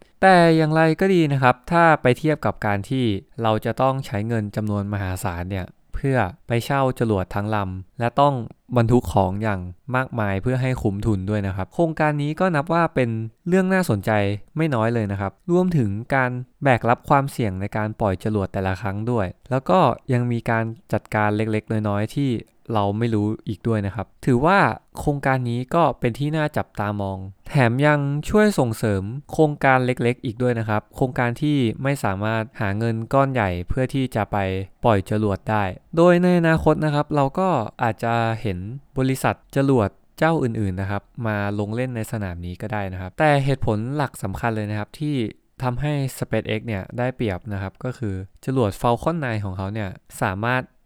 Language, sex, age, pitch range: English, male, 20-39, 105-135 Hz